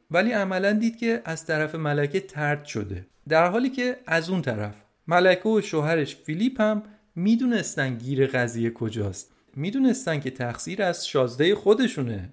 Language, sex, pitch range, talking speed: Persian, male, 130-200 Hz, 145 wpm